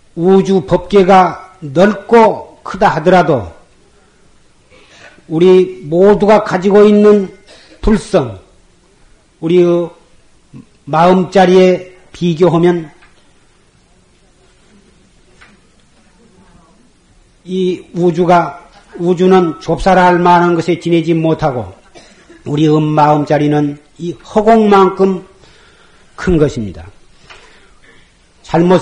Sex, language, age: male, Korean, 40-59